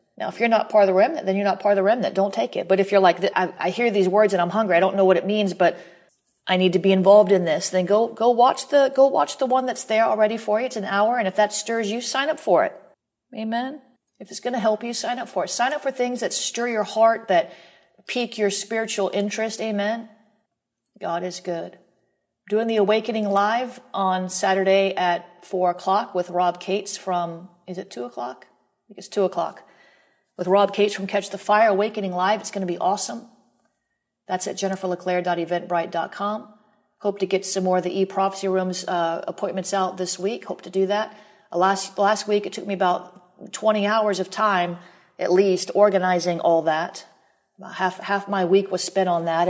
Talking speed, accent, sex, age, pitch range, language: 215 wpm, American, female, 40-59, 180-210 Hz, English